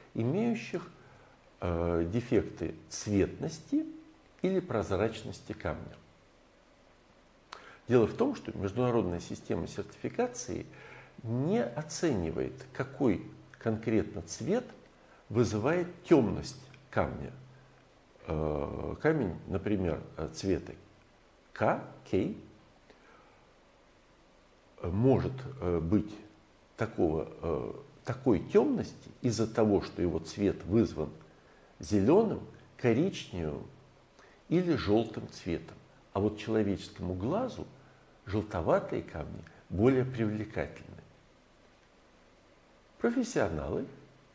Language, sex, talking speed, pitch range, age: Russian, male, 70 wpm, 90-130 Hz, 50-69